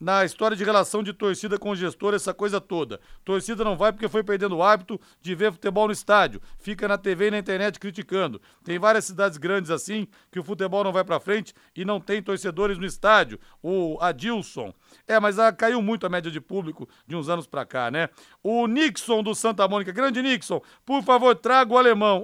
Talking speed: 210 wpm